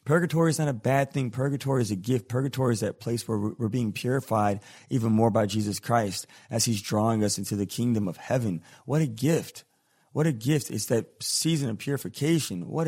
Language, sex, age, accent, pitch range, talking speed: English, male, 30-49, American, 100-130 Hz, 205 wpm